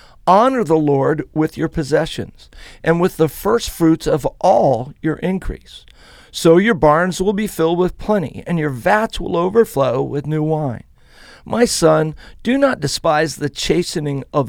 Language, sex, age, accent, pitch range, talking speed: English, male, 50-69, American, 145-190 Hz, 160 wpm